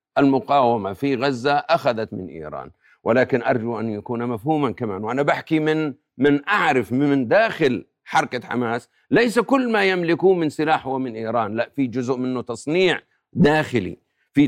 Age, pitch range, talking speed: 50-69, 120-160 Hz, 155 wpm